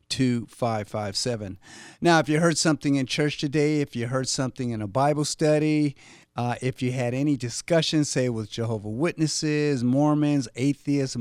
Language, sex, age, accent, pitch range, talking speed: English, male, 50-69, American, 110-145 Hz, 155 wpm